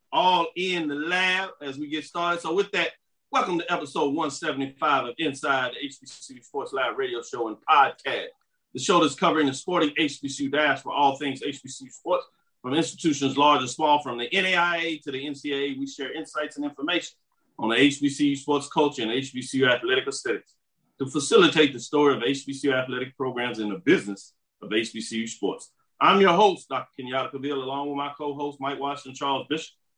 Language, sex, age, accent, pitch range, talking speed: English, male, 40-59, American, 130-160 Hz, 180 wpm